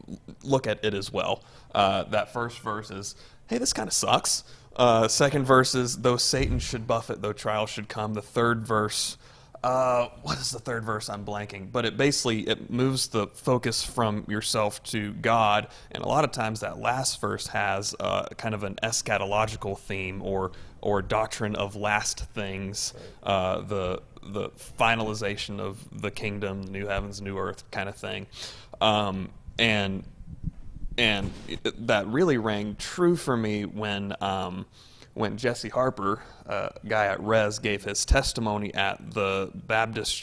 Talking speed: 165 wpm